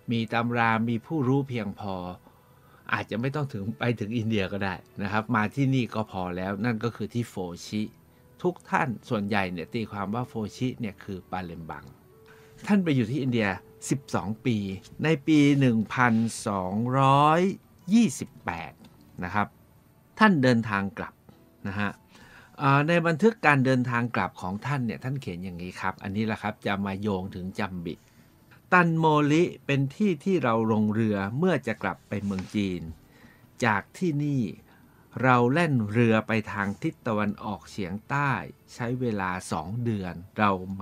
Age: 60-79